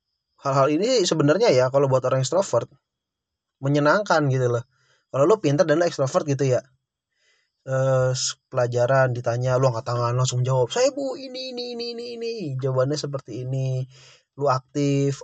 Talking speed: 150 wpm